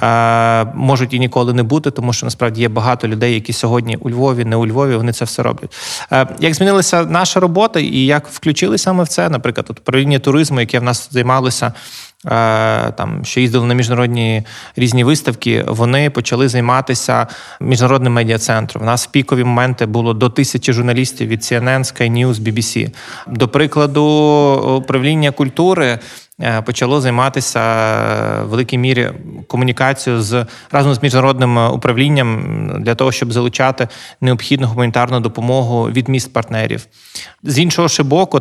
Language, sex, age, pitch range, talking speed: Ukrainian, male, 20-39, 120-135 Hz, 140 wpm